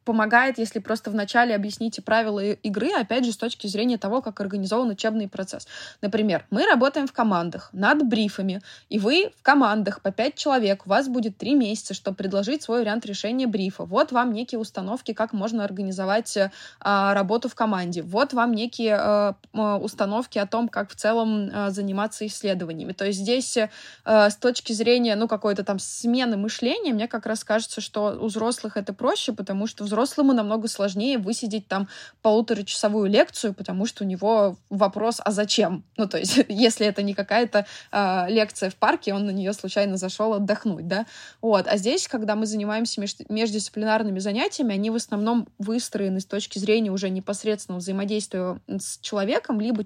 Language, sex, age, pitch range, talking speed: Russian, female, 20-39, 200-230 Hz, 170 wpm